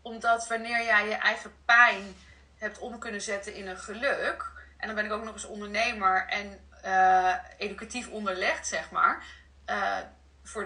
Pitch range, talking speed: 195-235 Hz, 165 wpm